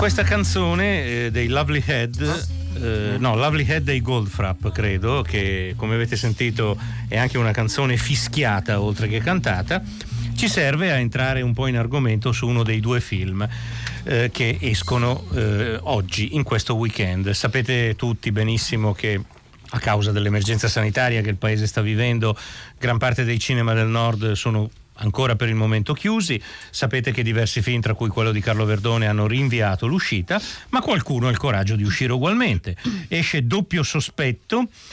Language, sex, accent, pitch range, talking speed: Italian, male, native, 110-130 Hz, 165 wpm